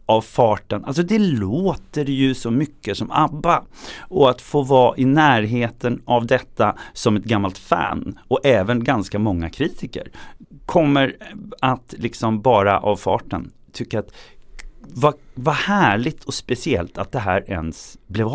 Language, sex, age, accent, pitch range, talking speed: Swedish, male, 30-49, native, 115-160 Hz, 145 wpm